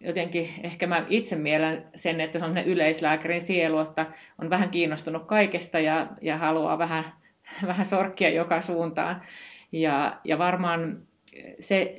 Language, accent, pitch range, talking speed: Finnish, native, 155-175 Hz, 140 wpm